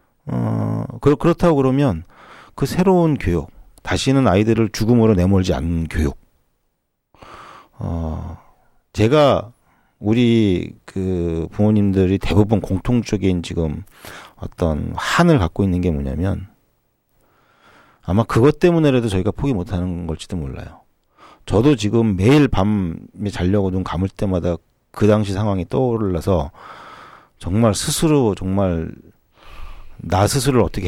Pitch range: 90-135 Hz